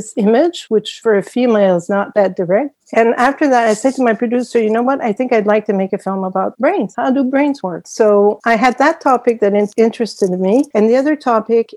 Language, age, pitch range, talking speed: English, 60-79, 190-225 Hz, 235 wpm